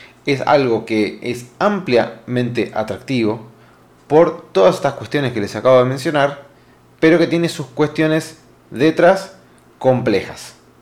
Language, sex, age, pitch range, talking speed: Spanish, male, 20-39, 115-145 Hz, 120 wpm